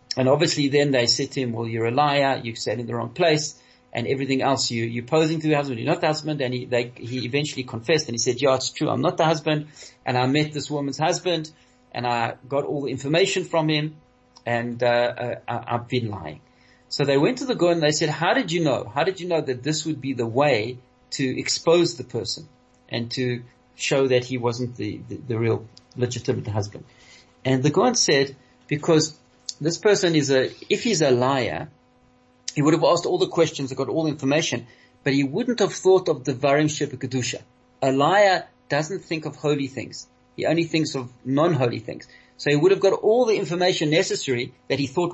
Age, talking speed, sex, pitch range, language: 40-59, 215 wpm, male, 125-155 Hz, English